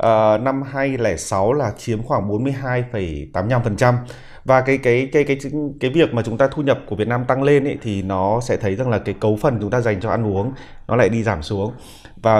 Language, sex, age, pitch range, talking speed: Vietnamese, male, 20-39, 105-135 Hz, 230 wpm